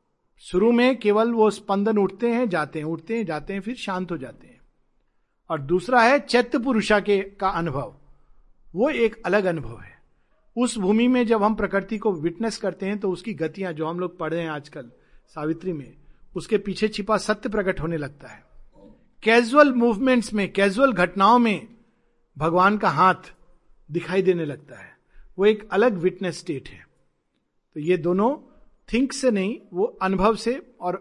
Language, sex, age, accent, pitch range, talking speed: Hindi, male, 50-69, native, 165-220 Hz, 175 wpm